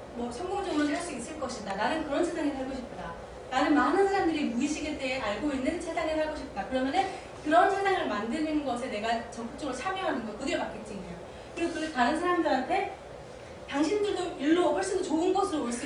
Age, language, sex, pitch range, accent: 30-49, Korean, female, 245-360 Hz, native